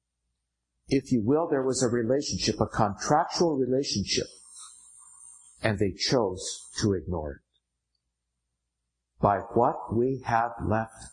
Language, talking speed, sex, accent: English, 115 wpm, male, American